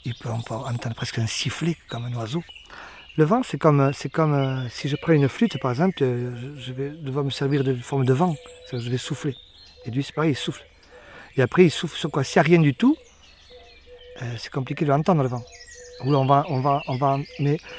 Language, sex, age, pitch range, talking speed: French, male, 40-59, 130-165 Hz, 225 wpm